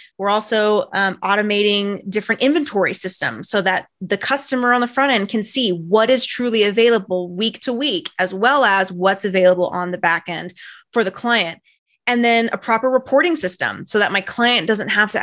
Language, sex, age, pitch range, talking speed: English, female, 20-39, 190-235 Hz, 195 wpm